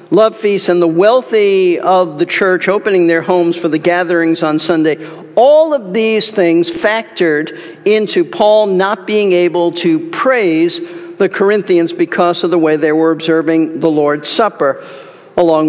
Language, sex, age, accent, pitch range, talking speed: English, male, 50-69, American, 165-215 Hz, 155 wpm